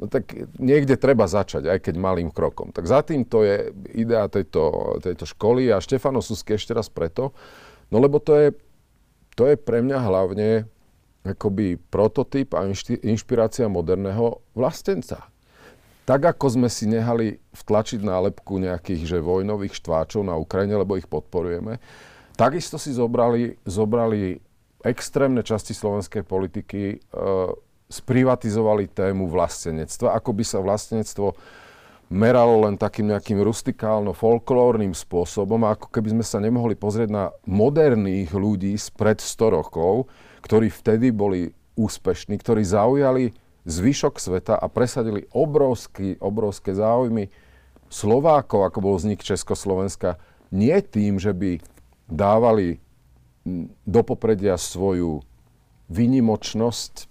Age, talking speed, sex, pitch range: 40-59, 125 wpm, male, 95-120 Hz